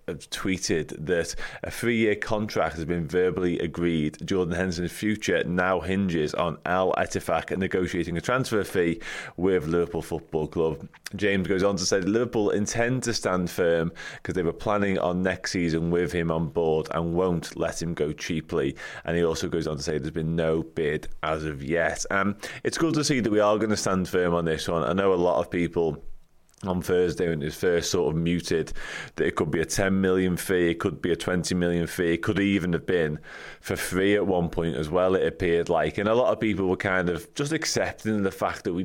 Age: 20-39